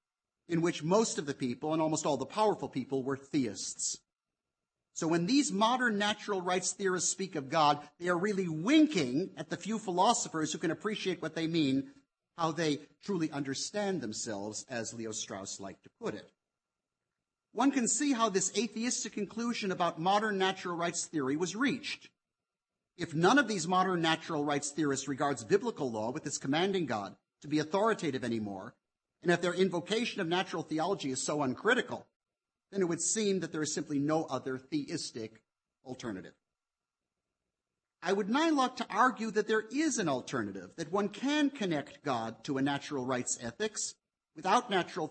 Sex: male